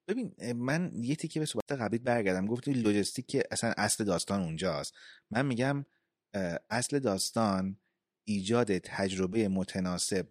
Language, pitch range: Persian, 95-115 Hz